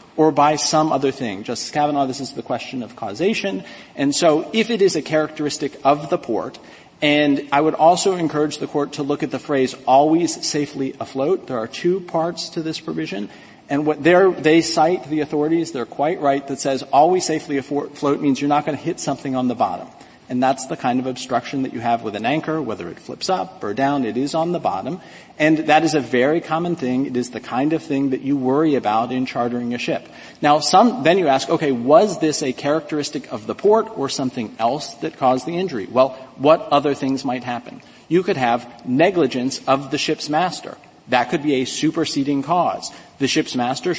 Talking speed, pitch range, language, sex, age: 215 wpm, 135-165 Hz, English, male, 40-59